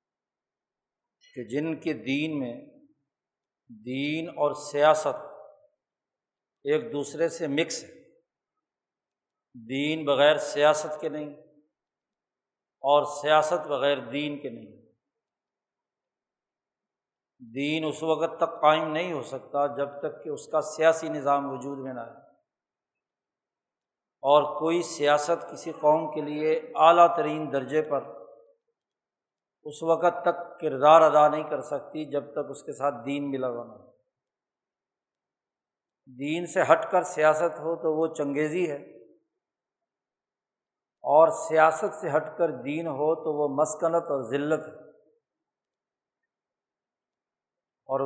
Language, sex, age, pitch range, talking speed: Urdu, male, 50-69, 145-165 Hz, 115 wpm